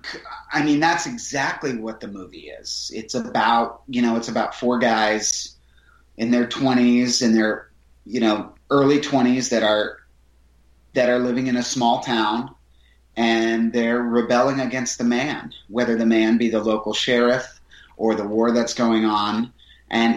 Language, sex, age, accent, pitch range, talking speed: English, male, 30-49, American, 105-120 Hz, 160 wpm